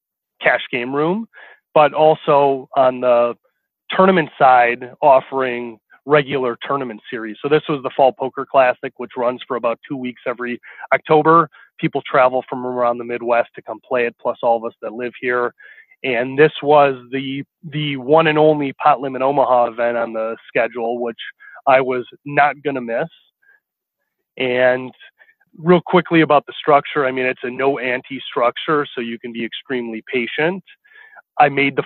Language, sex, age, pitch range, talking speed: English, male, 30-49, 120-150 Hz, 170 wpm